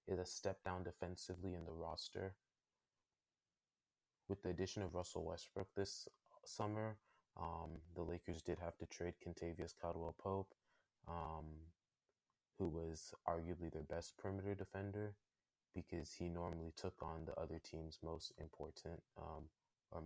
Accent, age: American, 20-39